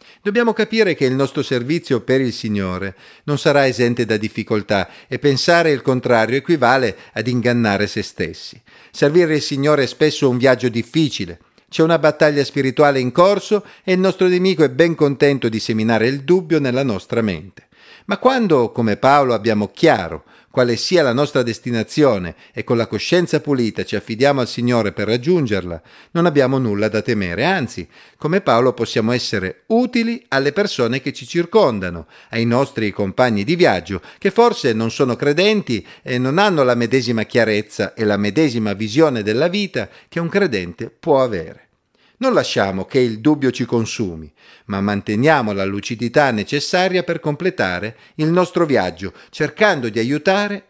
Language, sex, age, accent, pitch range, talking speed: Italian, male, 50-69, native, 110-170 Hz, 160 wpm